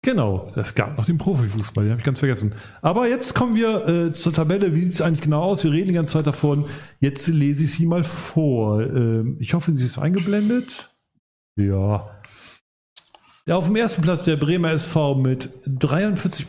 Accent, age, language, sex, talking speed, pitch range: German, 40-59, German, male, 195 wpm, 125-160 Hz